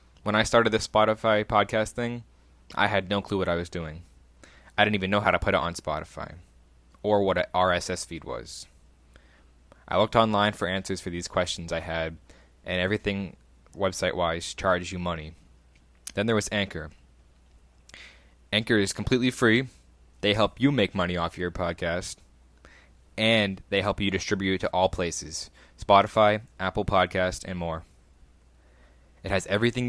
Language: English